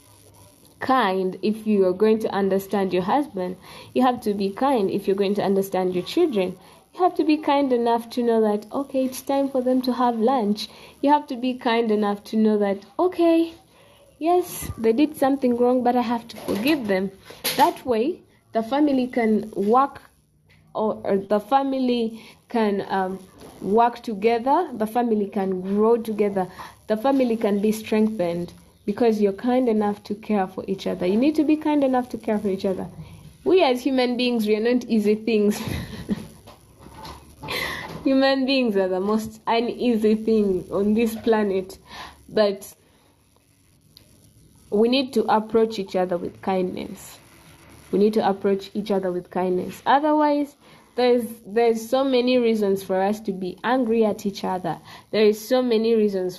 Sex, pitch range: female, 195-250 Hz